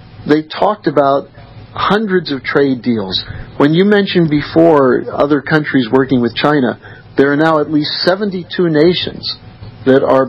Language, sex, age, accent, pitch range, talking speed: English, male, 50-69, American, 125-155 Hz, 145 wpm